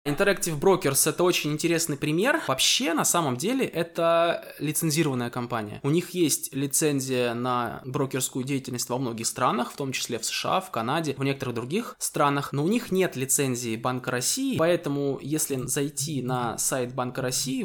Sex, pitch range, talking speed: male, 130-170 Hz, 165 wpm